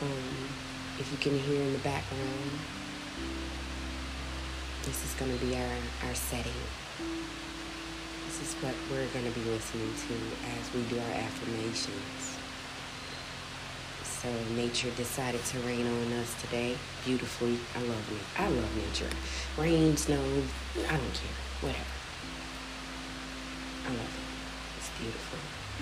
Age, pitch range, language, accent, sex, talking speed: 30-49, 85-135 Hz, English, American, female, 125 wpm